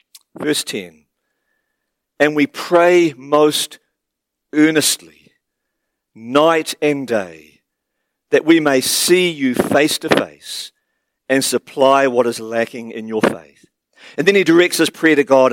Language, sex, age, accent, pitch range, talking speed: English, male, 50-69, Australian, 125-170 Hz, 130 wpm